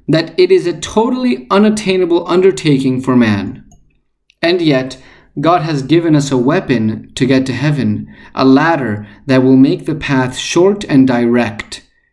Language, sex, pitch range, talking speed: Spanish, male, 130-175 Hz, 155 wpm